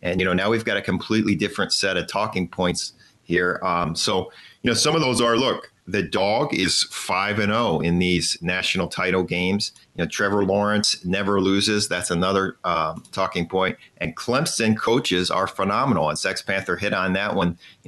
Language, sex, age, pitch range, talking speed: English, male, 40-59, 90-110 Hz, 190 wpm